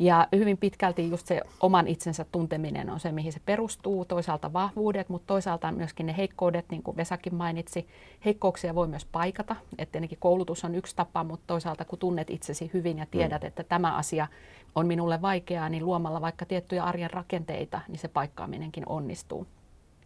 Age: 30-49